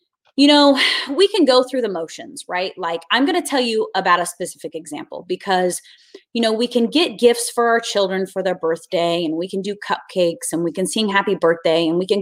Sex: female